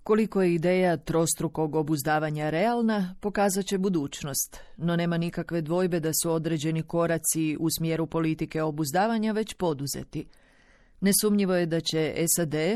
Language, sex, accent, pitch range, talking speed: Croatian, female, native, 155-185 Hz, 125 wpm